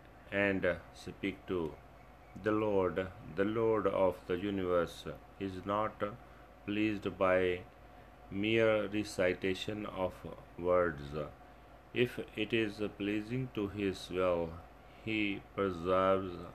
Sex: male